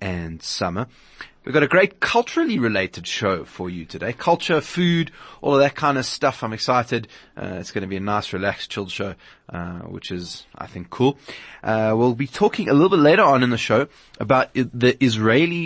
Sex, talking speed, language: male, 205 wpm, English